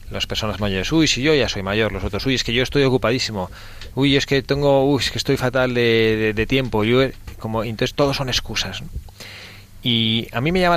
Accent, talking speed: Spanish, 230 wpm